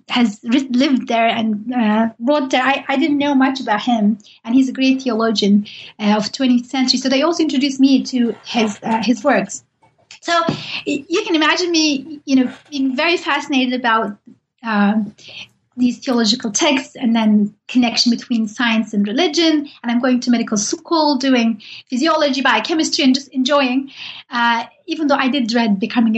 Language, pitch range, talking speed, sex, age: English, 225-275 Hz, 170 wpm, female, 30-49